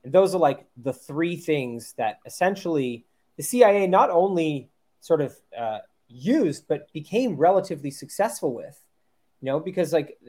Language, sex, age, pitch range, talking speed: English, male, 30-49, 135-185 Hz, 150 wpm